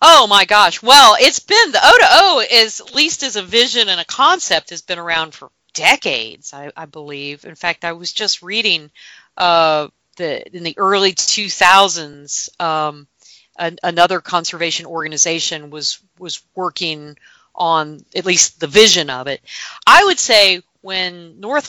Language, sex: English, female